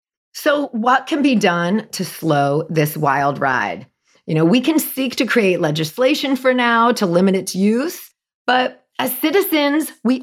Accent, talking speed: American, 165 wpm